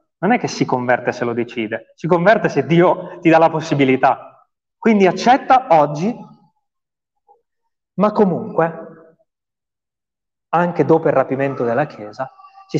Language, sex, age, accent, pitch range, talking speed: Italian, male, 30-49, native, 130-215 Hz, 130 wpm